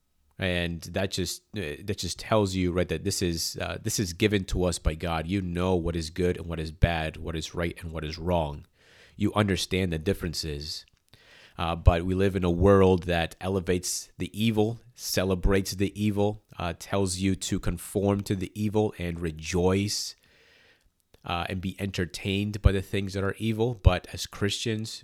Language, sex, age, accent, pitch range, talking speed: English, male, 30-49, American, 85-100 Hz, 180 wpm